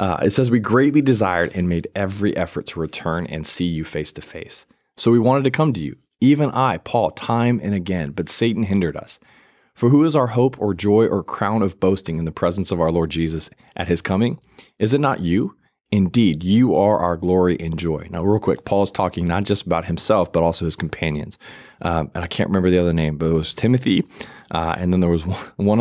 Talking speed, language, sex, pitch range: 230 wpm, English, male, 85-110 Hz